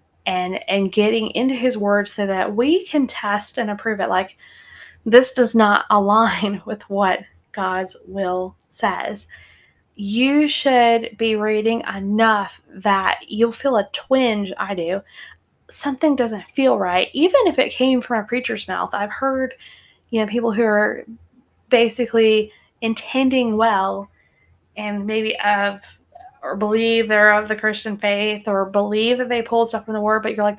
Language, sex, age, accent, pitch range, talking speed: English, female, 10-29, American, 195-235 Hz, 155 wpm